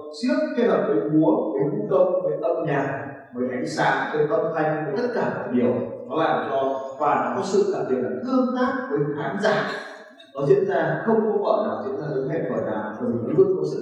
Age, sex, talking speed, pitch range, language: 20-39, male, 235 wpm, 165-255 Hz, Vietnamese